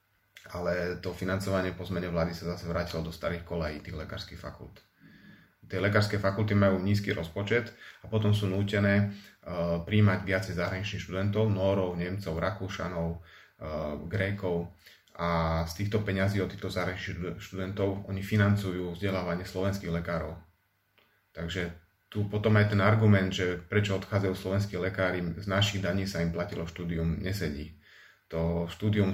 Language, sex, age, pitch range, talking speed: Slovak, male, 30-49, 85-100 Hz, 140 wpm